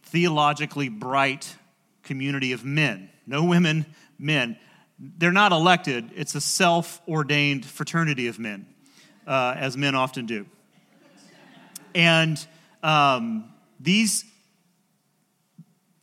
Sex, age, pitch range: male, 30-49, 135-175 Hz